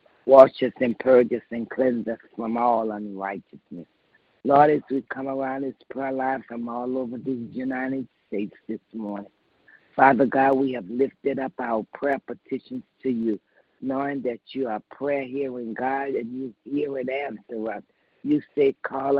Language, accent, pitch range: English, American, 120-145 Hz